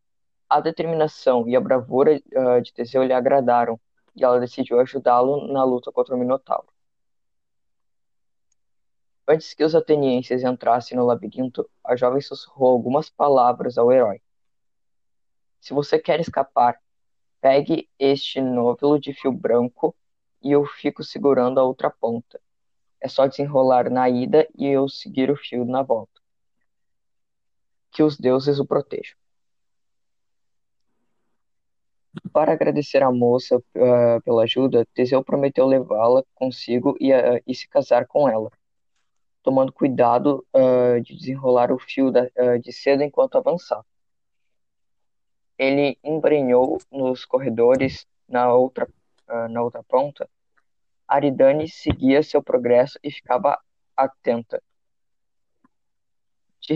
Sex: female